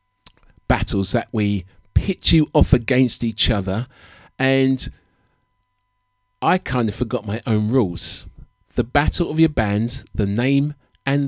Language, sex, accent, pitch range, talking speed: English, male, British, 100-130 Hz, 135 wpm